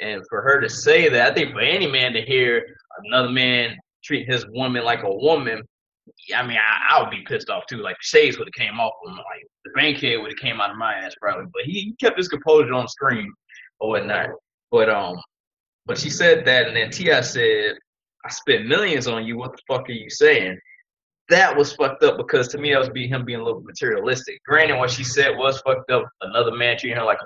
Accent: American